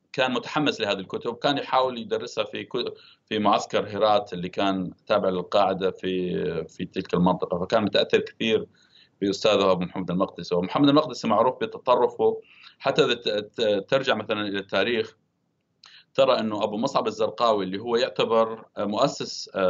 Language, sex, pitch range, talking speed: Arabic, male, 95-135 Hz, 135 wpm